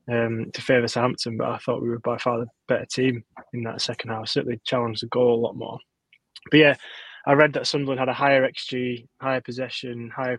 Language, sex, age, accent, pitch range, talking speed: English, male, 20-39, British, 120-135 Hz, 220 wpm